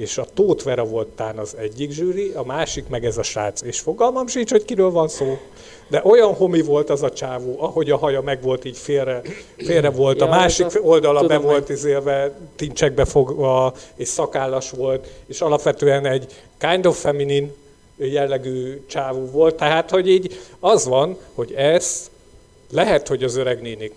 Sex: male